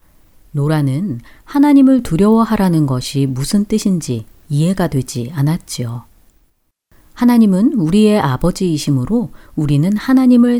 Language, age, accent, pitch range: Korean, 40-59, native, 130-205 Hz